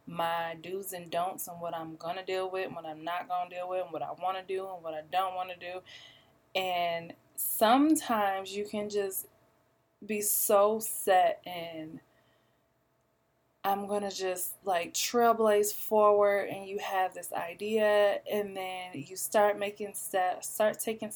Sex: female